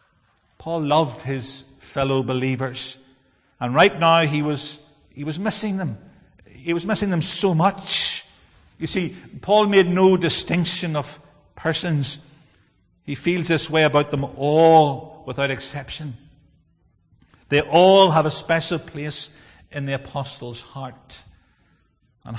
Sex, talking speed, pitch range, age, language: male, 130 wpm, 135-165 Hz, 50-69, English